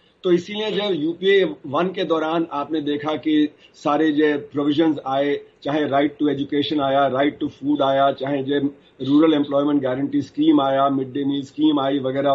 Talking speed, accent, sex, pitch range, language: 175 wpm, native, male, 150-195 Hz, Hindi